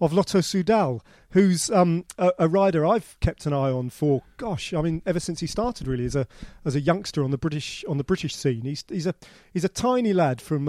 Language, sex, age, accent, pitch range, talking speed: English, male, 40-59, British, 150-185 Hz, 235 wpm